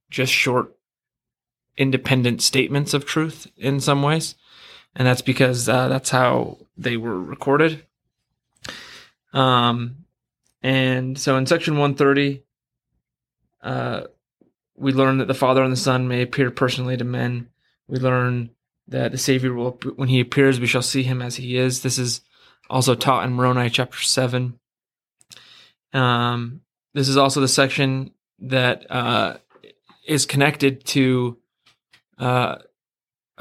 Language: English